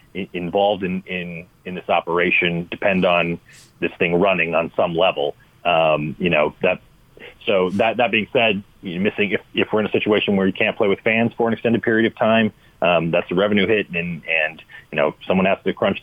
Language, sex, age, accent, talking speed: English, male, 40-59, American, 210 wpm